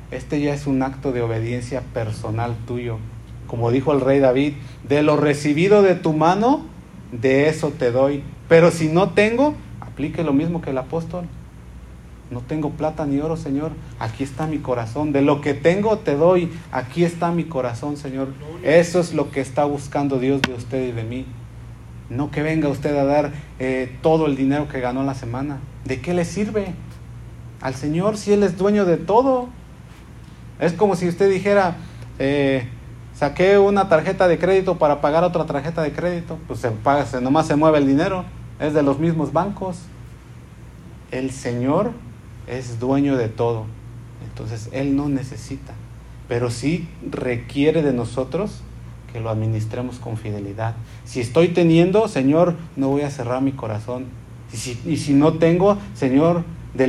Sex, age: male, 40-59